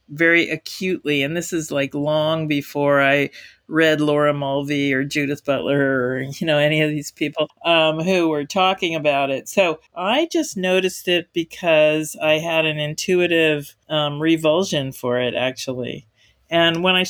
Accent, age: American, 50-69